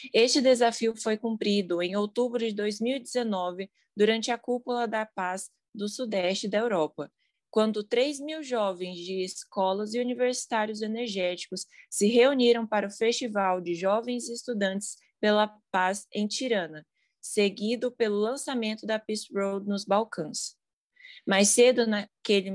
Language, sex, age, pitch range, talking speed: Portuguese, female, 20-39, 195-235 Hz, 130 wpm